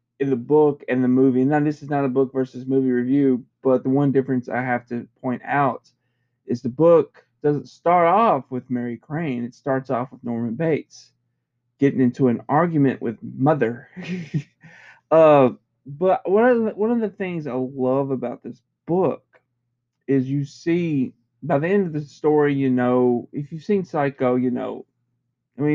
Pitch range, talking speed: 120-150 Hz, 175 wpm